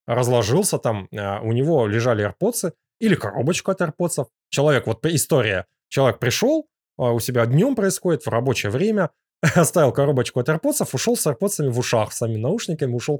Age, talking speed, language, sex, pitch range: 20-39, 160 wpm, Russian, male, 115-160 Hz